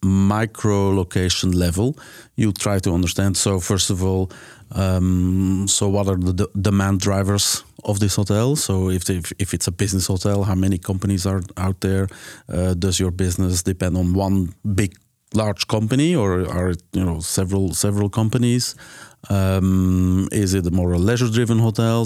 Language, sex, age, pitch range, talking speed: English, male, 40-59, 95-110 Hz, 170 wpm